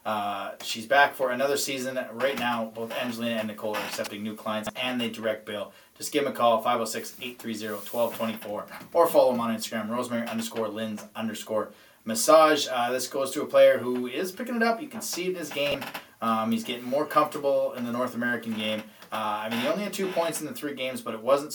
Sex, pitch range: male, 110-135 Hz